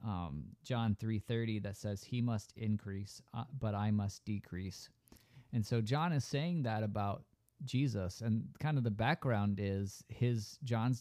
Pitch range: 105-125 Hz